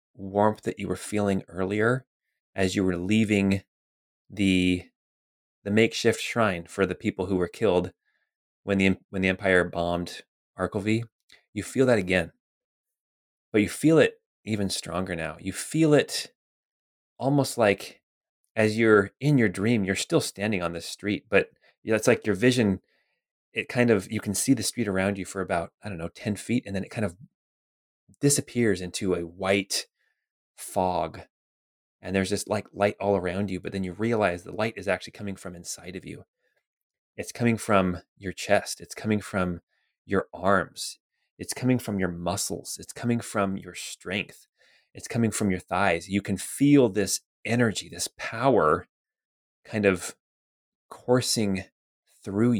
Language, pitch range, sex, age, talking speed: English, 90-110 Hz, male, 20-39, 165 wpm